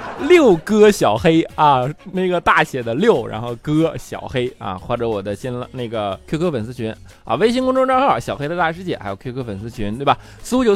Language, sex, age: Chinese, male, 20-39